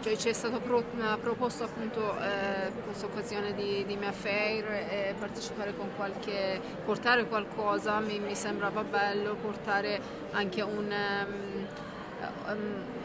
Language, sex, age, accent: Italian, female, 20-39, native